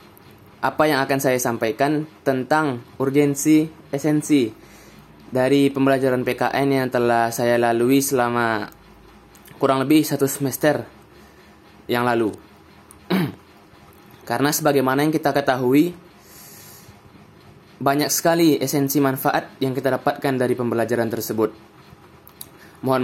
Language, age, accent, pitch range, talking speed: Indonesian, 20-39, native, 115-140 Hz, 100 wpm